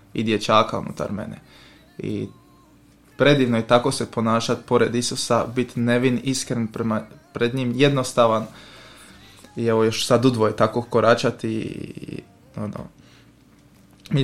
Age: 20-39